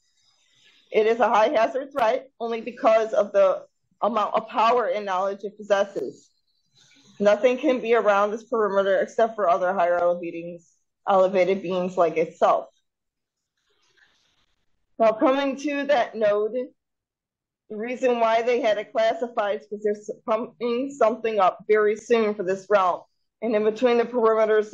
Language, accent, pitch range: English, American, 190-235 Hz